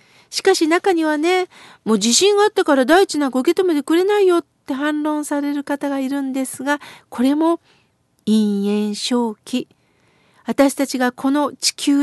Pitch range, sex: 265-335 Hz, female